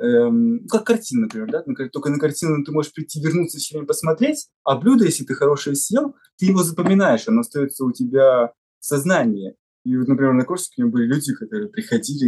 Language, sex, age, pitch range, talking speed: Russian, male, 20-39, 130-210 Hz, 200 wpm